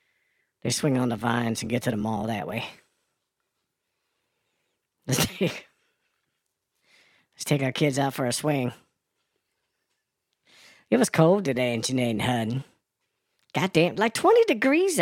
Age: 40-59